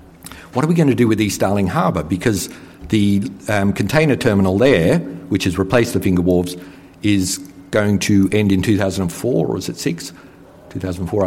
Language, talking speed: English, 175 wpm